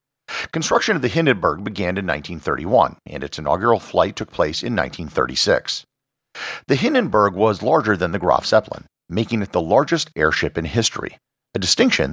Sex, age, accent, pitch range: male, 50-69, American, 85-130 Hz